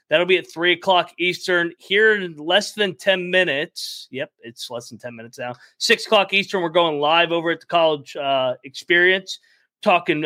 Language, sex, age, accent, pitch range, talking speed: English, male, 30-49, American, 145-180 Hz, 185 wpm